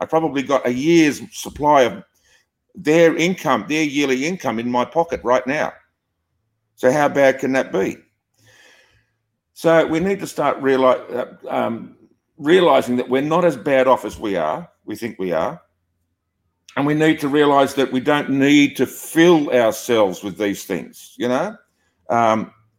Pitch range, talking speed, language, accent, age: 110-140 Hz, 160 wpm, English, Australian, 50-69